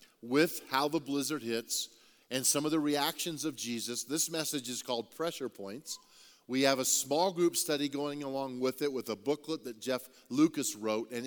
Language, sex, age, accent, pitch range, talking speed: English, male, 40-59, American, 125-160 Hz, 190 wpm